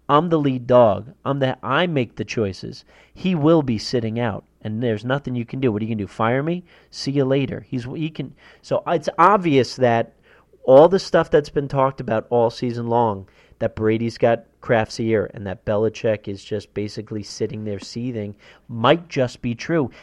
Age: 40-59